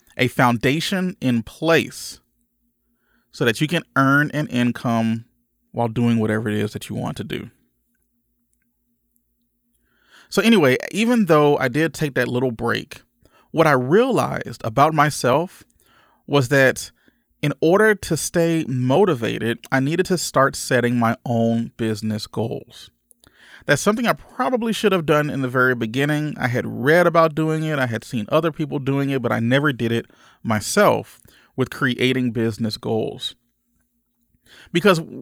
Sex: male